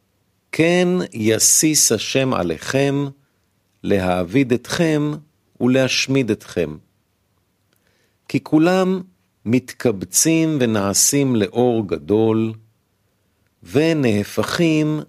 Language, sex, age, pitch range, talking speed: Hebrew, male, 50-69, 100-140 Hz, 60 wpm